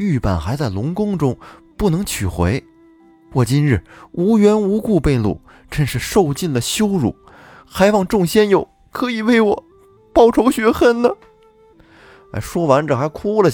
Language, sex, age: Chinese, male, 20-39